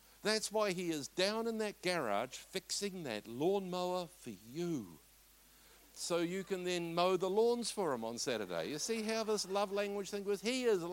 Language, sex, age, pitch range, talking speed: English, male, 60-79, 130-190 Hz, 190 wpm